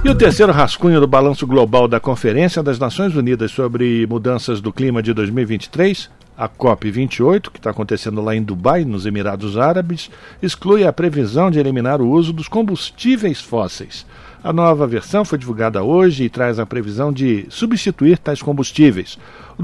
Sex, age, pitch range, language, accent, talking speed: male, 60-79, 120-170 Hz, Portuguese, Brazilian, 165 wpm